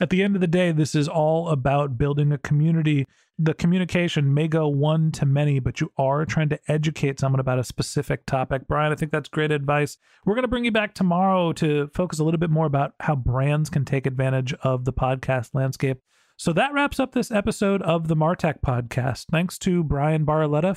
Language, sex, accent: English, male, American